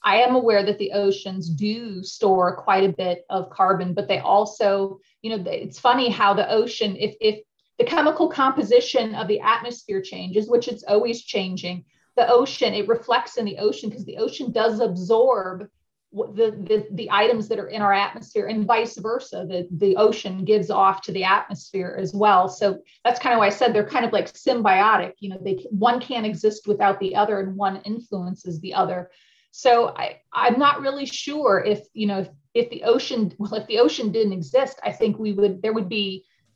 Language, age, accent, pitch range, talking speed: English, 30-49, American, 195-240 Hz, 200 wpm